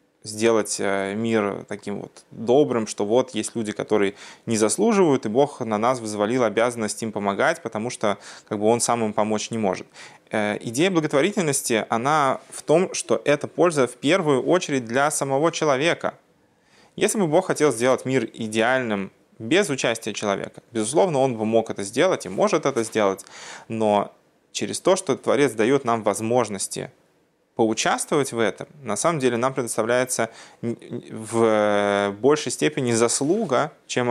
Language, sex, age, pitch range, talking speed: Russian, male, 20-39, 110-130 Hz, 150 wpm